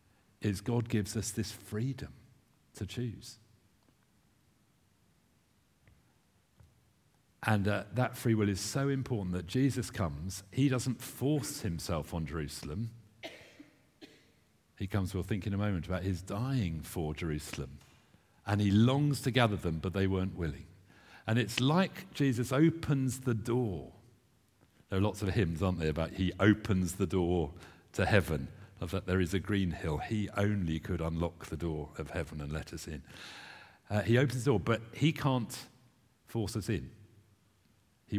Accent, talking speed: British, 155 wpm